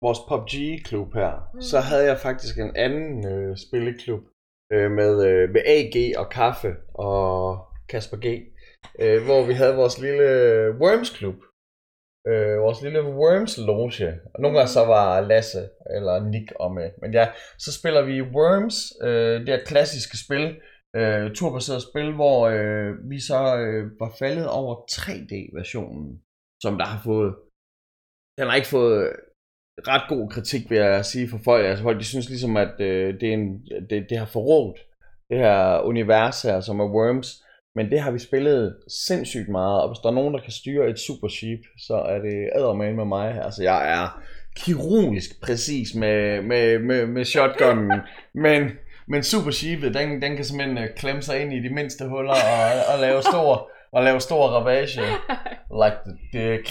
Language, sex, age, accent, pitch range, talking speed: Danish, male, 20-39, native, 105-140 Hz, 170 wpm